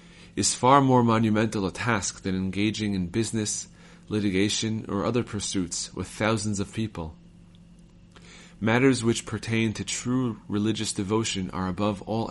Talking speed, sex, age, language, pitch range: 135 wpm, male, 30-49, English, 95-115 Hz